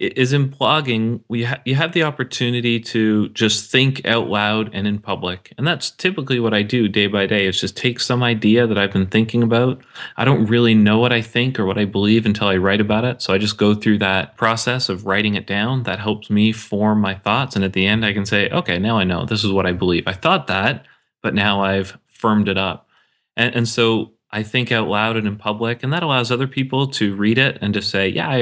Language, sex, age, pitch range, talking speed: English, male, 30-49, 100-120 Hz, 245 wpm